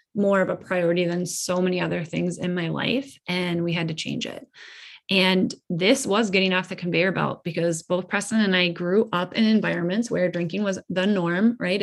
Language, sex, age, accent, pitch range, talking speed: English, female, 20-39, American, 175-195 Hz, 210 wpm